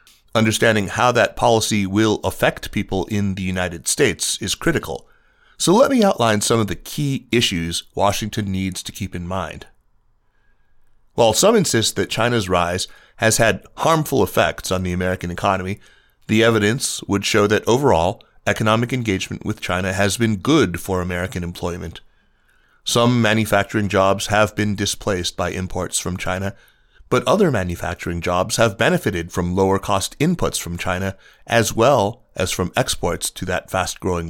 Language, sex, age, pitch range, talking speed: English, male, 30-49, 95-115 Hz, 150 wpm